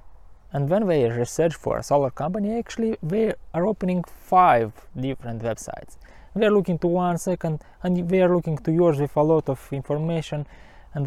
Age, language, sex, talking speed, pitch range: 20-39, English, male, 180 wpm, 115-165 Hz